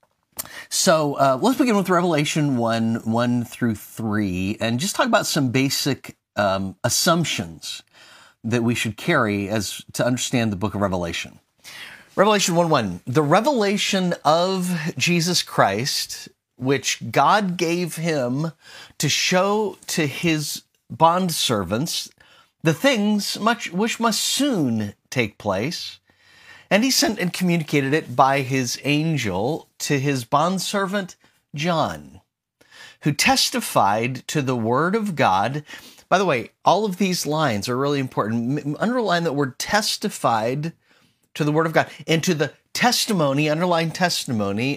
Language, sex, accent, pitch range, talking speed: English, male, American, 125-180 Hz, 135 wpm